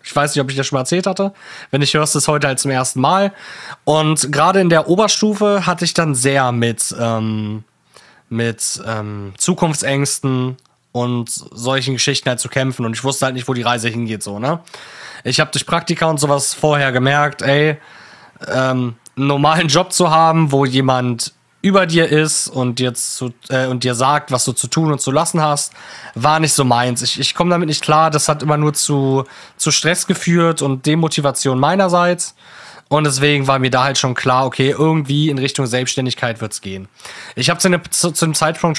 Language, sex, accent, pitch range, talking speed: German, male, German, 125-155 Hz, 205 wpm